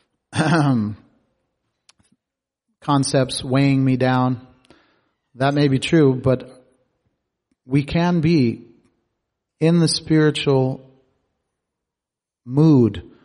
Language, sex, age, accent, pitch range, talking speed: English, male, 40-59, American, 115-135 Hz, 70 wpm